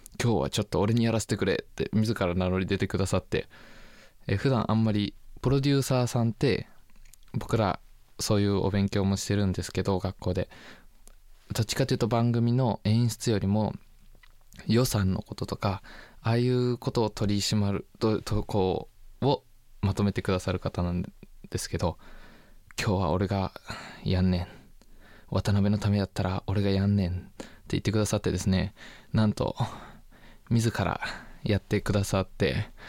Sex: male